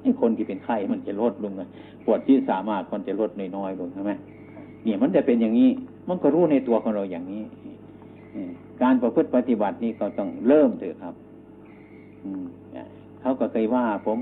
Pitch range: 105-130 Hz